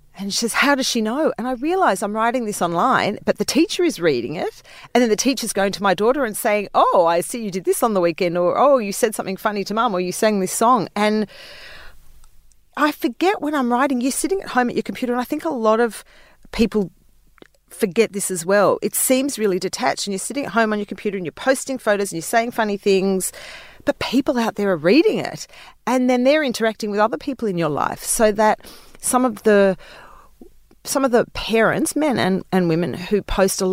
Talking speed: 230 wpm